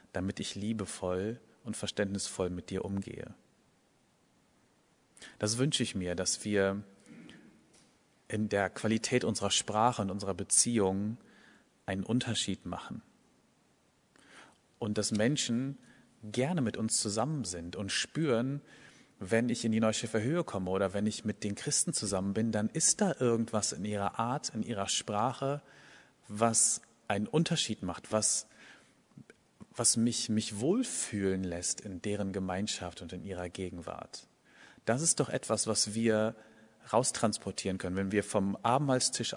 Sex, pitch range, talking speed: male, 100-120 Hz, 135 wpm